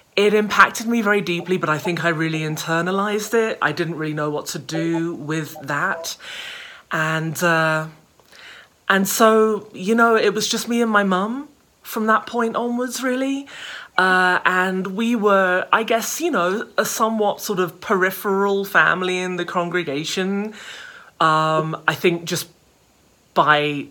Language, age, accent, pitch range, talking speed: English, 30-49, British, 155-205 Hz, 155 wpm